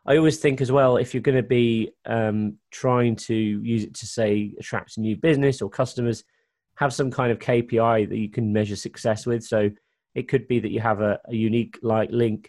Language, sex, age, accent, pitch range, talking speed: English, male, 30-49, British, 105-115 Hz, 215 wpm